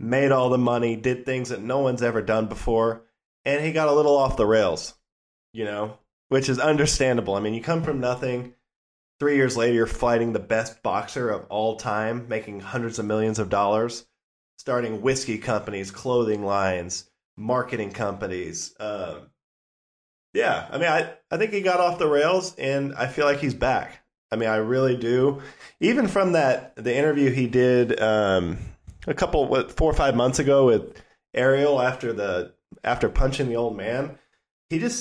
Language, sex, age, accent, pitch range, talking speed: English, male, 20-39, American, 110-130 Hz, 180 wpm